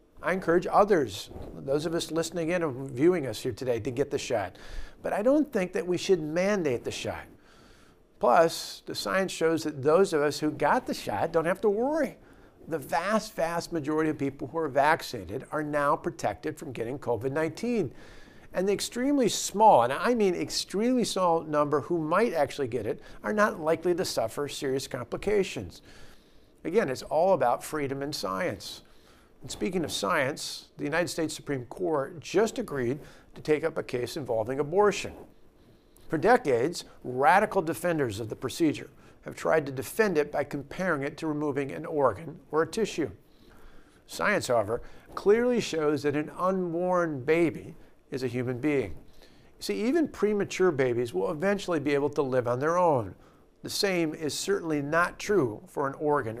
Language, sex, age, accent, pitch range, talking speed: English, male, 50-69, American, 145-185 Hz, 170 wpm